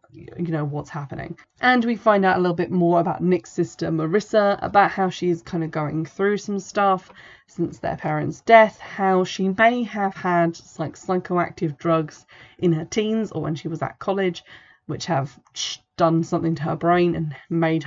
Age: 20-39